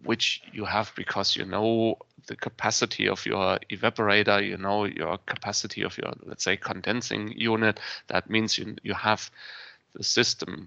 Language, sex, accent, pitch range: English, male, German, 105-120 Hz